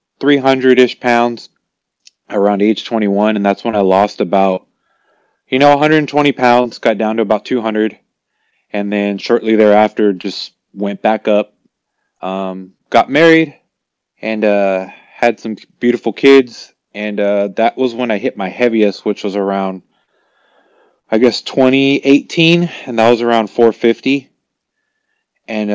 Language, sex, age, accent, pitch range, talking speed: English, male, 20-39, American, 100-125 Hz, 135 wpm